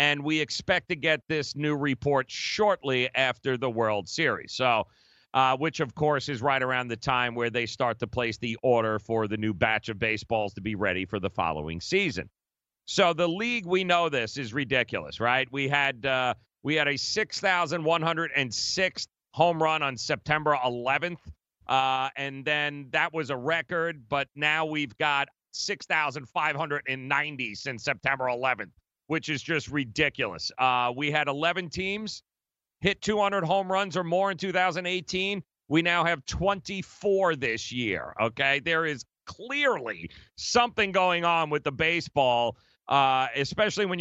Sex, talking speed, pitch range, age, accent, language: male, 155 wpm, 130-170 Hz, 40-59, American, English